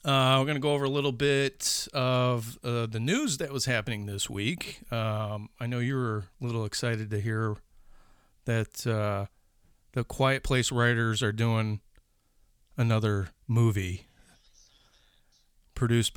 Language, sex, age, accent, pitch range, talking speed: English, male, 40-59, American, 105-125 Hz, 145 wpm